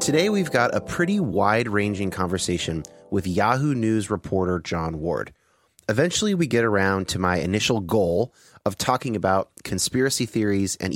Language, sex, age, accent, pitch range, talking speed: English, male, 30-49, American, 100-130 Hz, 150 wpm